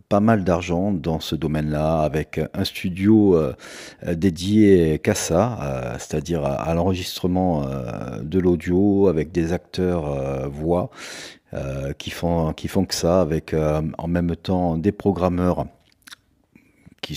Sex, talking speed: male, 120 wpm